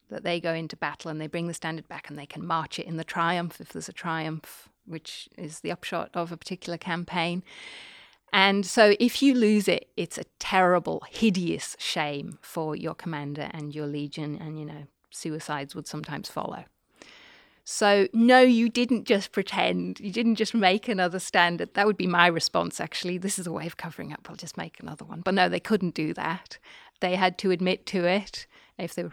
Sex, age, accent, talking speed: female, 30-49, British, 205 wpm